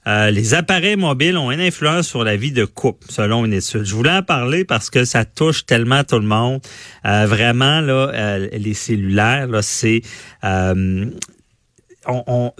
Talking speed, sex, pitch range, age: 180 wpm, male, 105-135 Hz, 40-59